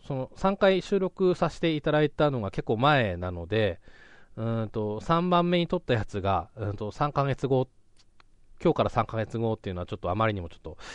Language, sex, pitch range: Japanese, male, 90-125 Hz